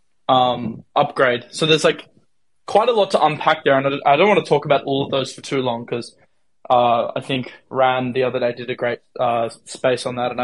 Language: English